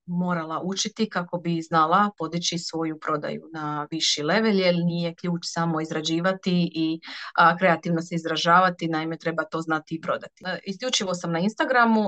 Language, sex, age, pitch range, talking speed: Croatian, female, 30-49, 165-205 Hz, 150 wpm